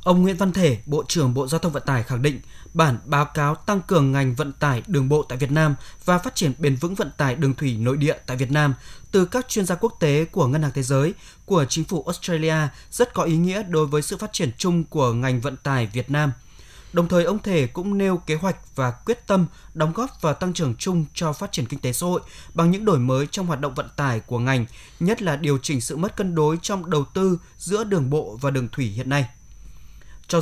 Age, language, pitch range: 20-39, Vietnamese, 140-180 Hz